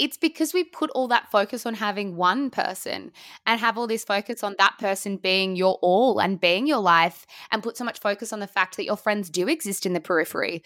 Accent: Australian